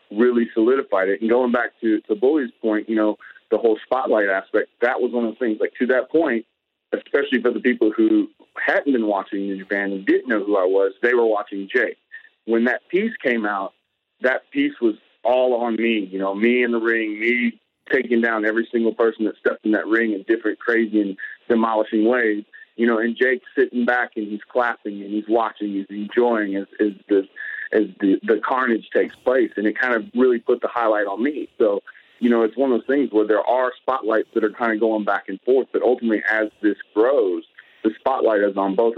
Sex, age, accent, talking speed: male, 40-59, American, 220 wpm